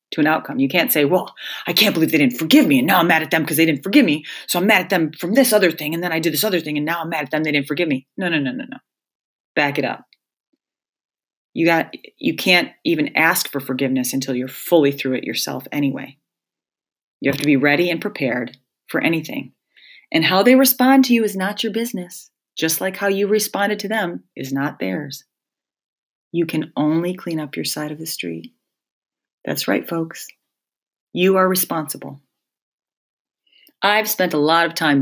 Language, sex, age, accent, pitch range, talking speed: English, female, 30-49, American, 145-190 Hz, 215 wpm